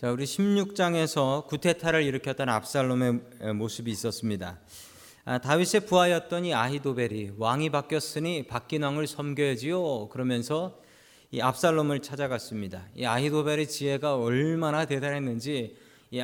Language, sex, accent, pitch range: Korean, male, native, 120-170 Hz